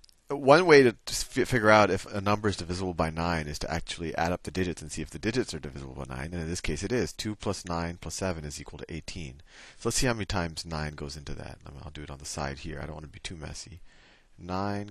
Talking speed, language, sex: 275 wpm, English, male